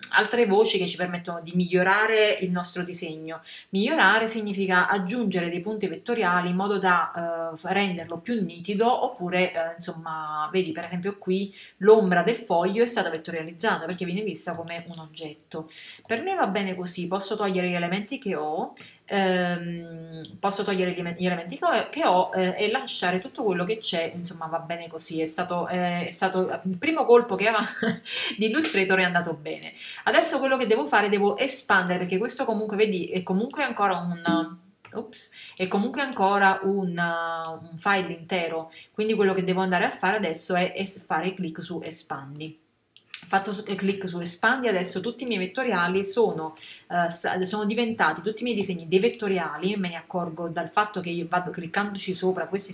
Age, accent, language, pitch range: 30-49, native, Italian, 175-210 Hz